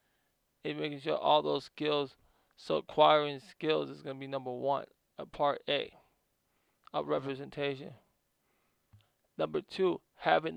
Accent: American